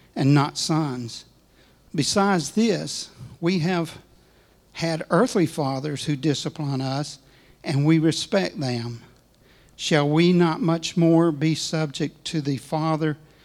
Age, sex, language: 60-79, male, English